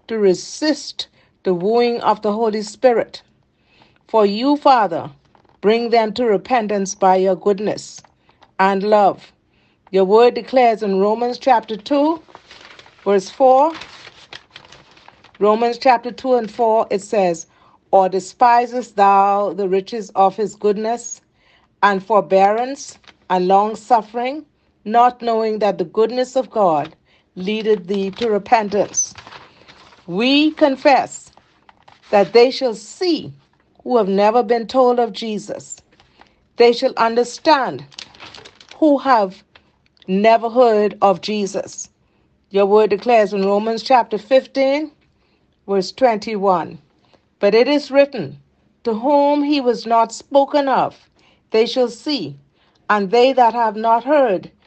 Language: English